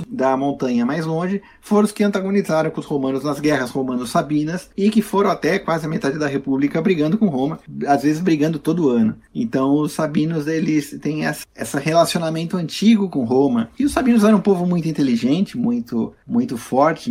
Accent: Brazilian